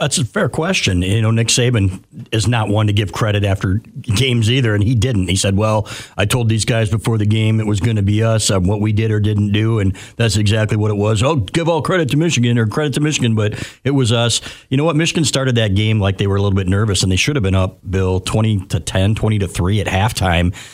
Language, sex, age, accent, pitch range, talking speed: English, male, 50-69, American, 95-115 Hz, 265 wpm